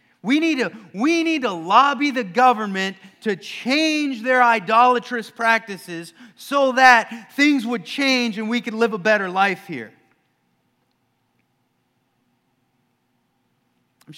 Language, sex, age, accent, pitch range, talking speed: English, male, 40-59, American, 155-240 Hz, 120 wpm